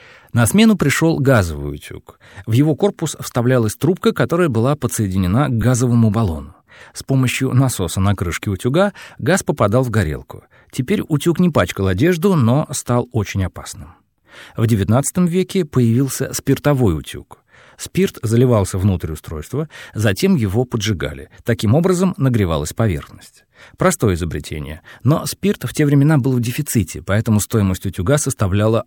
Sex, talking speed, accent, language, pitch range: male, 135 wpm, native, Russian, 100-145 Hz